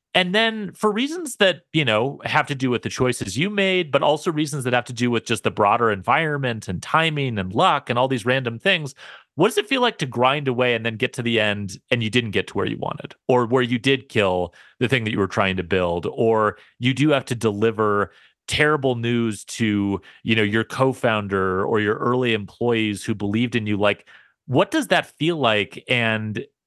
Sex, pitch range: male, 105-140 Hz